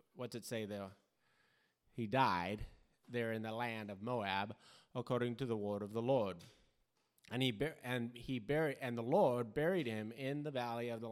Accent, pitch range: American, 105-130 Hz